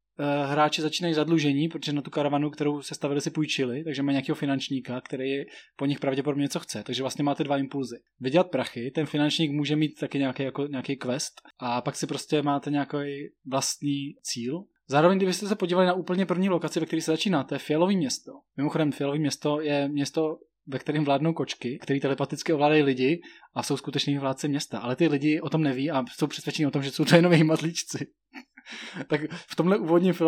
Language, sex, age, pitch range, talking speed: Czech, male, 20-39, 140-165 Hz, 195 wpm